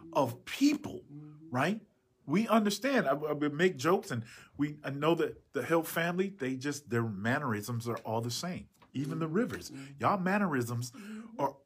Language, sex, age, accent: English, male, 40-59, American